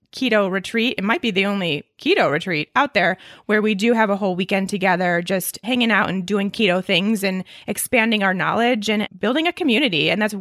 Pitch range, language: 190-240 Hz, English